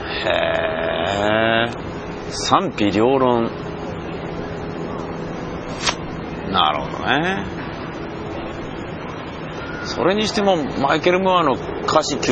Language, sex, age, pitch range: Japanese, male, 40-59, 85-135 Hz